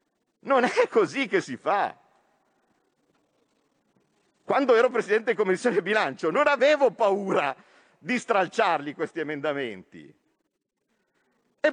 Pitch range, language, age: 220-290 Hz, Italian, 50-69